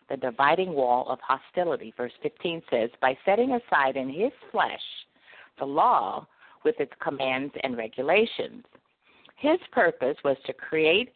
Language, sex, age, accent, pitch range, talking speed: English, female, 50-69, American, 135-220 Hz, 140 wpm